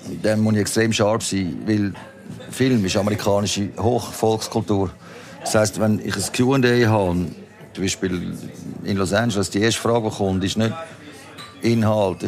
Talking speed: 150 wpm